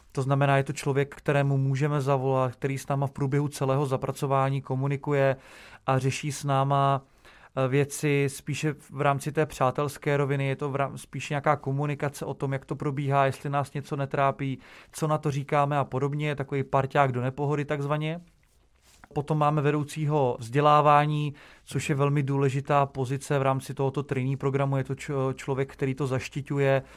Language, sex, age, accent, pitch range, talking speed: English, male, 30-49, Czech, 135-145 Hz, 160 wpm